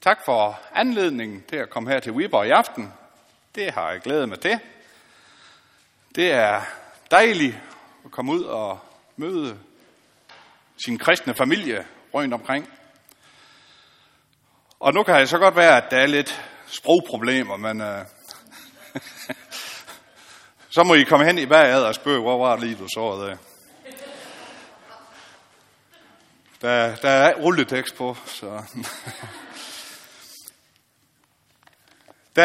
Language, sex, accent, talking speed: Danish, male, native, 125 wpm